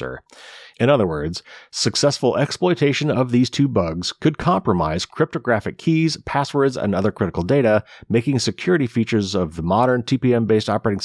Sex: male